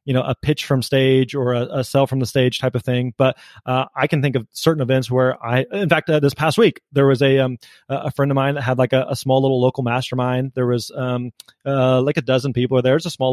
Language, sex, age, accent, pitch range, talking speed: English, male, 20-39, American, 125-145 Hz, 270 wpm